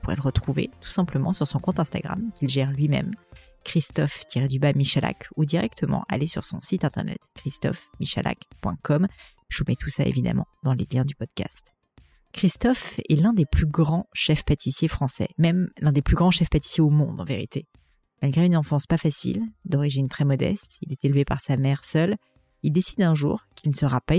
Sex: female